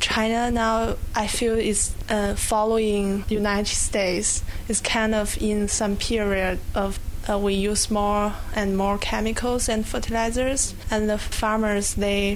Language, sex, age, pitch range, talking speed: English, female, 20-39, 200-220 Hz, 145 wpm